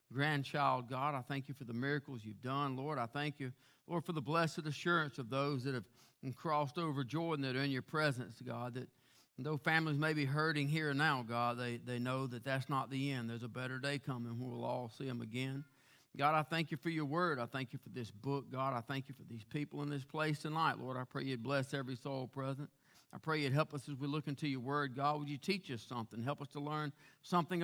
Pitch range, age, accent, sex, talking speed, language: 135-165 Hz, 50-69, American, male, 250 wpm, English